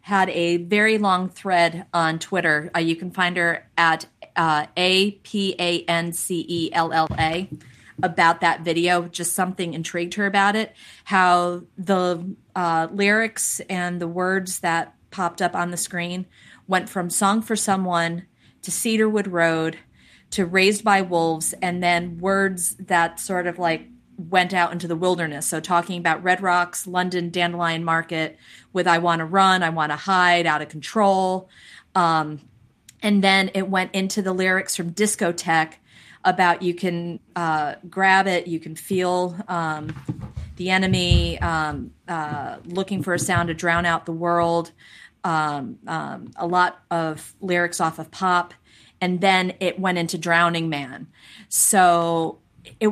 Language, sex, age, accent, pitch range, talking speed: English, female, 30-49, American, 165-185 Hz, 160 wpm